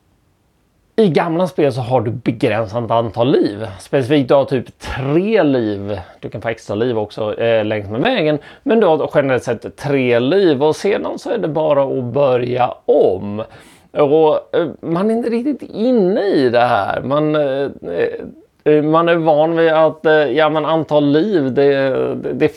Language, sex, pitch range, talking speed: Swedish, male, 115-155 Hz, 175 wpm